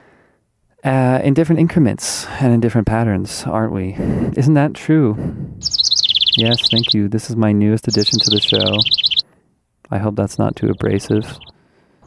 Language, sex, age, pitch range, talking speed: English, male, 30-49, 100-120 Hz, 150 wpm